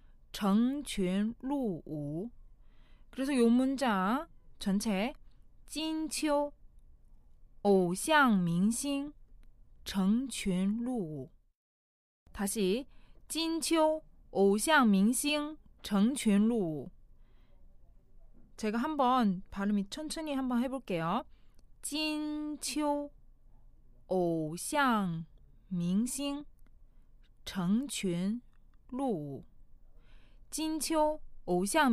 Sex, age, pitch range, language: female, 20-39, 190-270 Hz, Korean